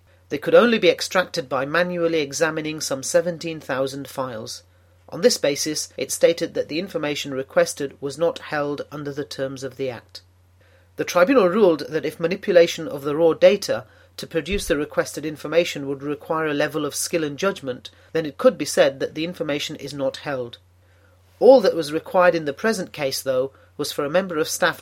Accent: British